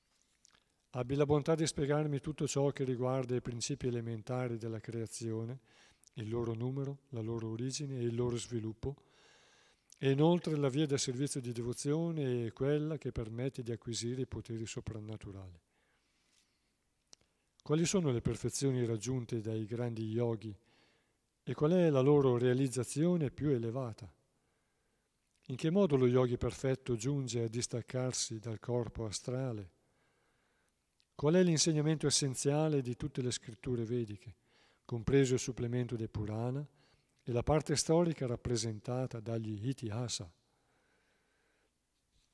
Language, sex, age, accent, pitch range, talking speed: Italian, male, 50-69, native, 115-140 Hz, 130 wpm